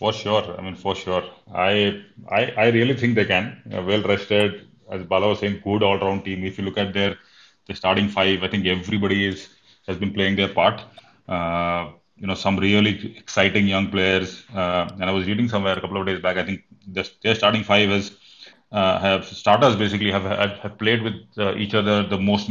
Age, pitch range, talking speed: 30-49, 95-105 Hz, 220 wpm